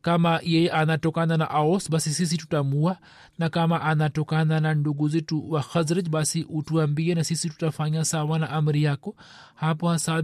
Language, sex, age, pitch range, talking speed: Swahili, male, 40-59, 155-175 Hz, 165 wpm